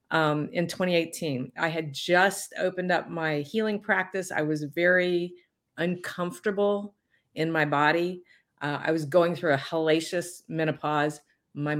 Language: English